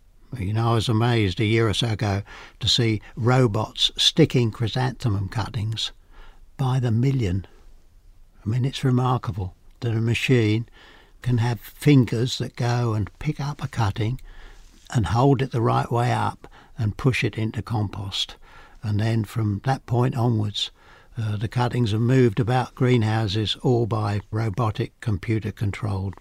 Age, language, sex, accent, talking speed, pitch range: 60-79, English, male, British, 150 wpm, 105-130 Hz